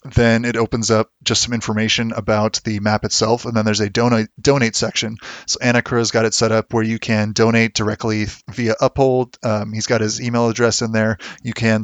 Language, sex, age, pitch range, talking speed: English, male, 30-49, 110-120 Hz, 215 wpm